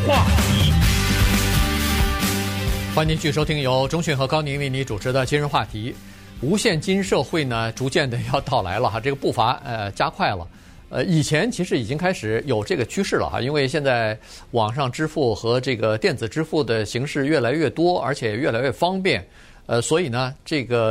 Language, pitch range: Chinese, 105-150 Hz